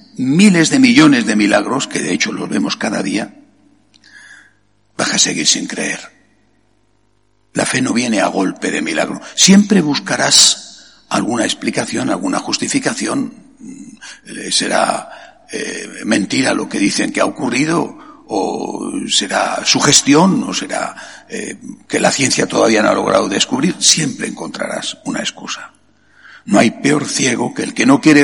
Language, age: Spanish, 60-79